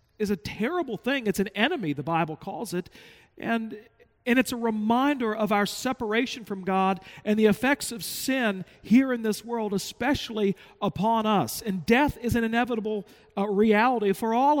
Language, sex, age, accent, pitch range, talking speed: English, male, 50-69, American, 190-235 Hz, 175 wpm